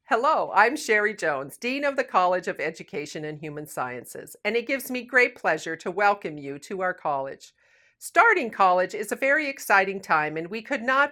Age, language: 50-69, English